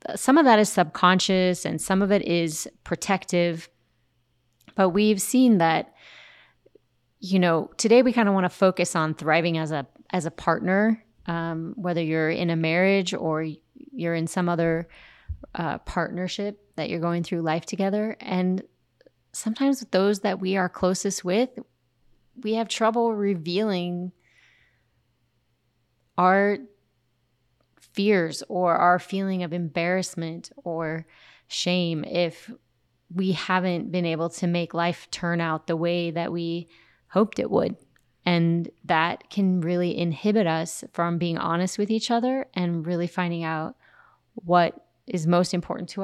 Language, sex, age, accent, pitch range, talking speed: English, female, 30-49, American, 165-195 Hz, 145 wpm